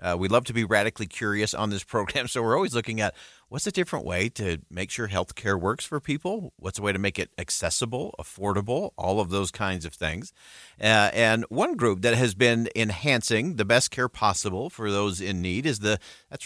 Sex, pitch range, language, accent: male, 95-130 Hz, English, American